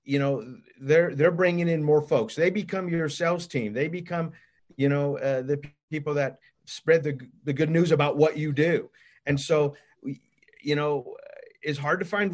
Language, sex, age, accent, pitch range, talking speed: English, male, 50-69, American, 140-170 Hz, 195 wpm